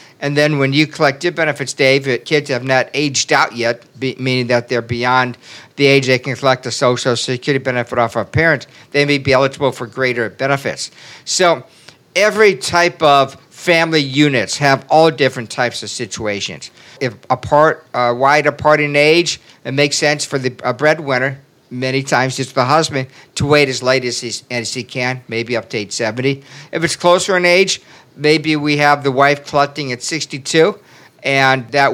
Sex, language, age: male, English, 50-69